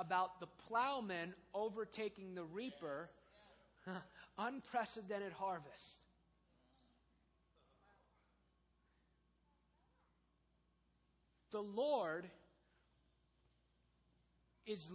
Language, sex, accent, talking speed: English, male, American, 45 wpm